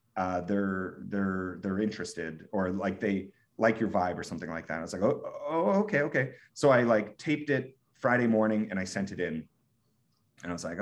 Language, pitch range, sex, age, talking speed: English, 100-125 Hz, male, 30-49, 205 wpm